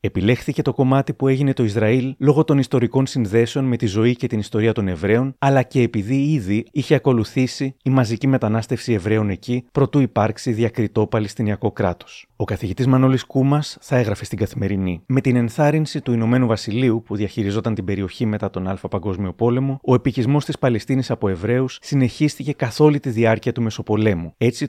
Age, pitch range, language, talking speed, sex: 30-49, 105-135 Hz, Greek, 175 wpm, male